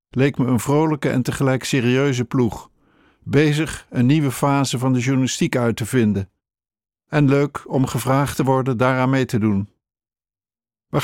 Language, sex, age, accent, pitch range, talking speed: Dutch, male, 50-69, Dutch, 120-145 Hz, 160 wpm